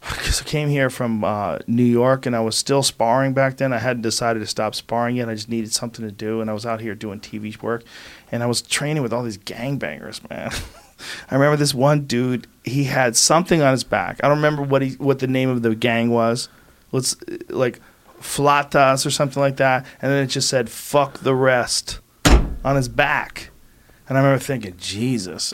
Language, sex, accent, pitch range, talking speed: English, male, American, 115-135 Hz, 215 wpm